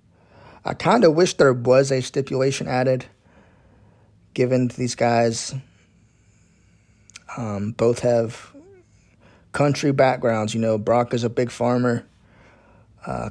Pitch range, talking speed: 105-130 Hz, 115 wpm